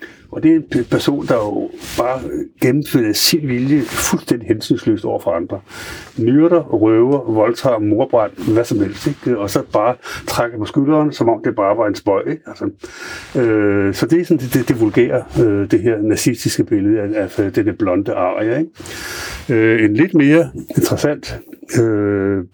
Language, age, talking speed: Danish, 60-79, 175 wpm